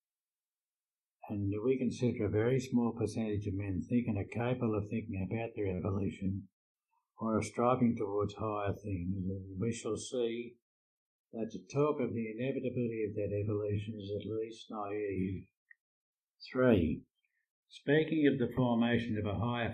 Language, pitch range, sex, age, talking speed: English, 105-125 Hz, male, 60-79, 145 wpm